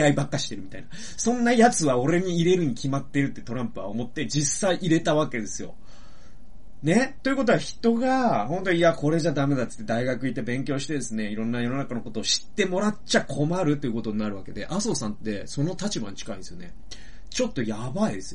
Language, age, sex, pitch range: Japanese, 30-49, male, 110-180 Hz